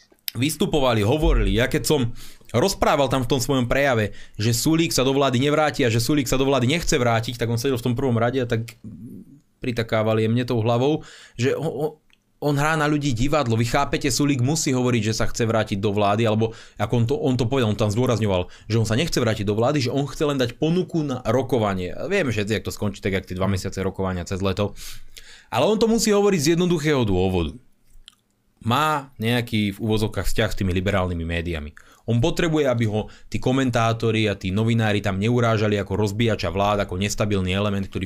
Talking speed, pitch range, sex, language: 205 wpm, 105-135 Hz, male, Slovak